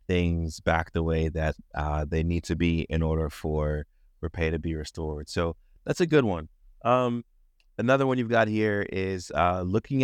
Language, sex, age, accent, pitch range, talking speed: English, male, 30-49, American, 80-105 Hz, 190 wpm